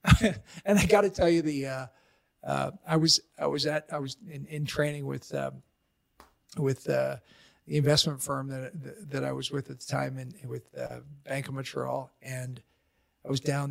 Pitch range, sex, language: 130-175 Hz, male, English